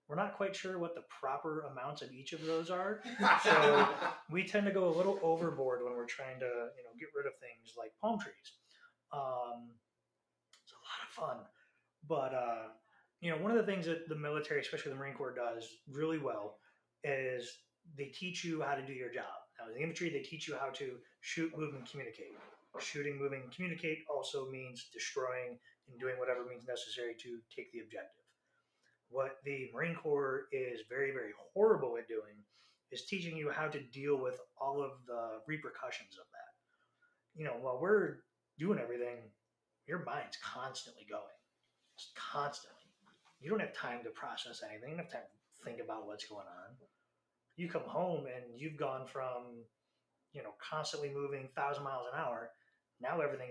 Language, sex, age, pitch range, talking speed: English, male, 20-39, 125-170 Hz, 185 wpm